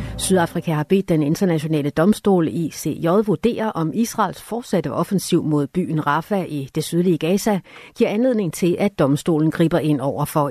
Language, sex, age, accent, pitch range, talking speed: Danish, female, 60-79, native, 155-195 Hz, 165 wpm